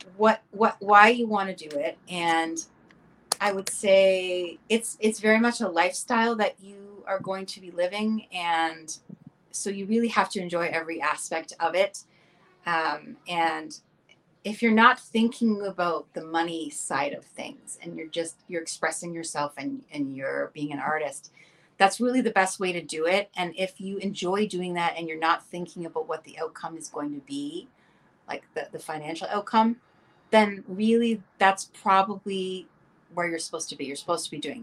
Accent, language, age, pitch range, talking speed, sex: American, English, 30-49, 160-205 Hz, 180 wpm, female